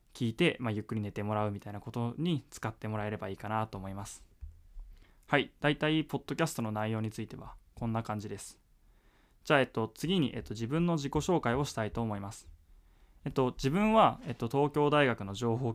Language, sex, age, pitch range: Japanese, male, 20-39, 105-140 Hz